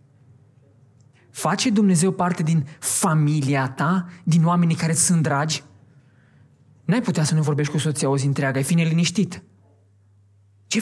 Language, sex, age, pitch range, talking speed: Romanian, male, 20-39, 140-205 Hz, 140 wpm